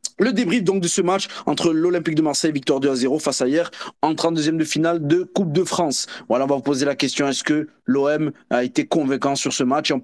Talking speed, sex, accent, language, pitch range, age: 255 wpm, male, French, French, 130-170 Hz, 20-39